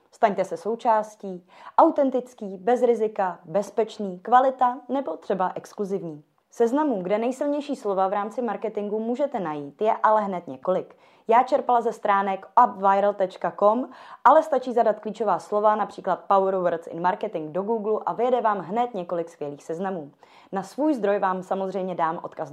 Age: 20-39